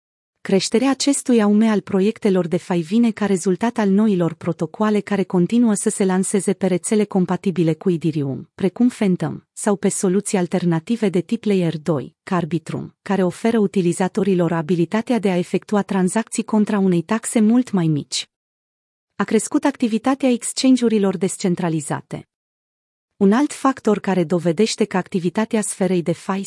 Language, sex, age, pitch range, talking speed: Romanian, female, 30-49, 180-220 Hz, 140 wpm